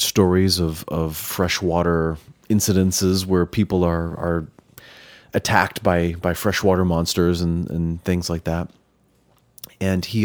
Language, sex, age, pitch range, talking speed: English, male, 30-49, 85-105 Hz, 125 wpm